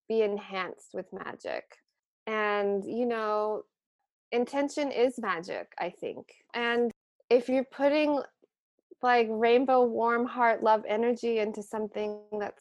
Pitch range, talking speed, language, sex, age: 175-220 Hz, 120 wpm, English, female, 20-39